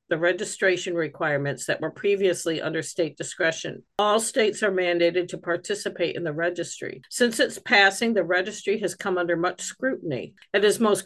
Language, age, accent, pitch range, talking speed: English, 50-69, American, 180-245 Hz, 170 wpm